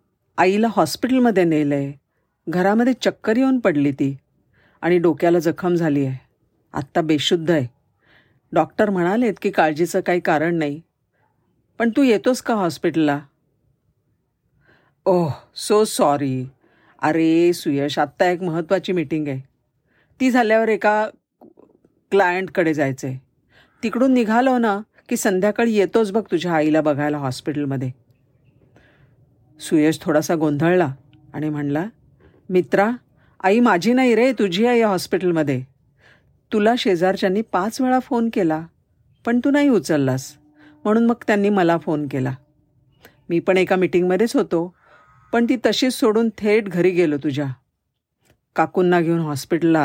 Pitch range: 145-210 Hz